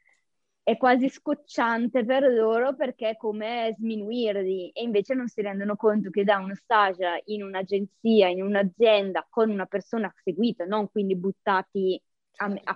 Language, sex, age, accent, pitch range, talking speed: Italian, female, 20-39, native, 185-215 Hz, 145 wpm